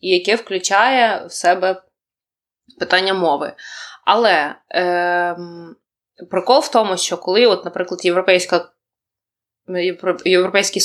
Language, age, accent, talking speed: Ukrainian, 20-39, native, 95 wpm